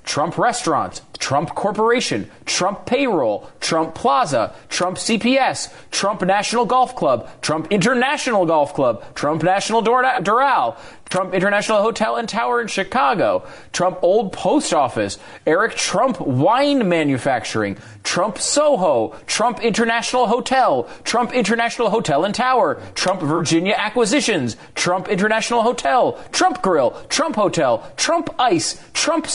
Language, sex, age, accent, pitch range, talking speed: English, male, 30-49, American, 190-270 Hz, 120 wpm